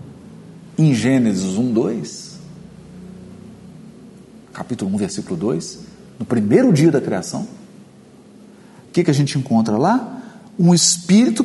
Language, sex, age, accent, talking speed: Portuguese, male, 50-69, Brazilian, 115 wpm